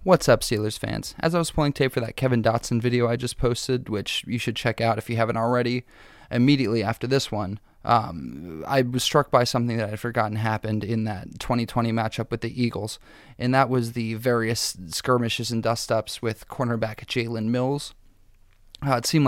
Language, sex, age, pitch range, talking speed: English, male, 20-39, 115-125 Hz, 195 wpm